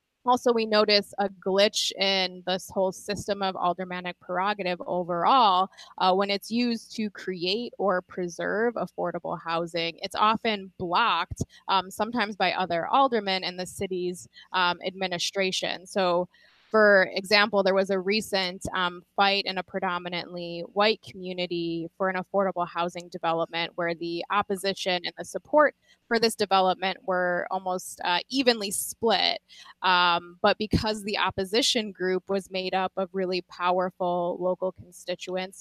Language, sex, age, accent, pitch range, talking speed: English, female, 20-39, American, 180-205 Hz, 140 wpm